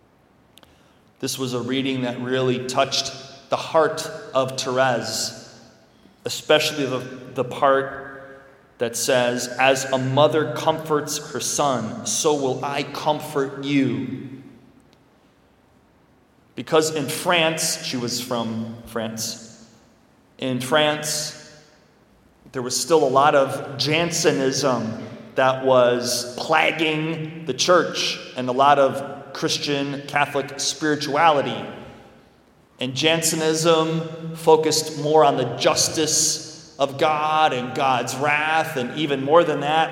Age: 30-49